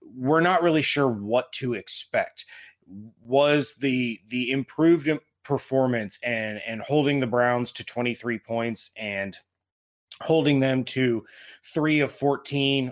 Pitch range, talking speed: 115-140 Hz, 125 wpm